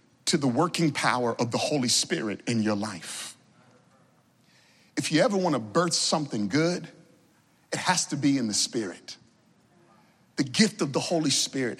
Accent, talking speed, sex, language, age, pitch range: American, 165 wpm, male, English, 40-59, 155-260 Hz